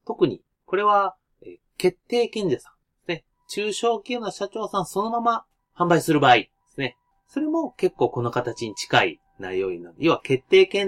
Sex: male